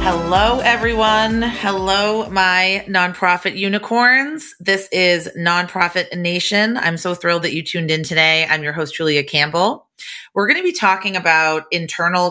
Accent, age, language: American, 30-49, English